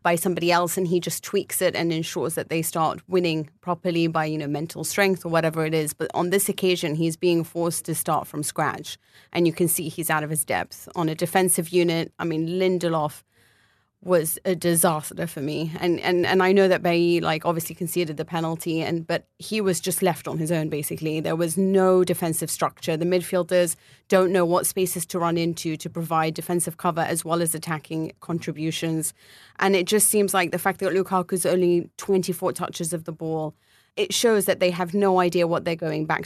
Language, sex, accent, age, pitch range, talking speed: English, female, British, 30-49, 165-185 Hz, 210 wpm